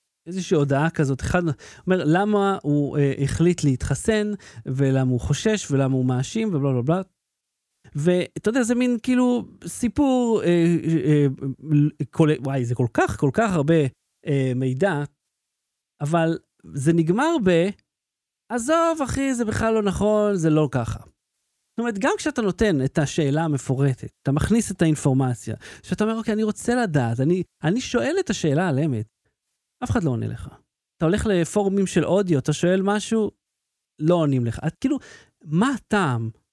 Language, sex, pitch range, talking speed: Hebrew, male, 140-215 Hz, 160 wpm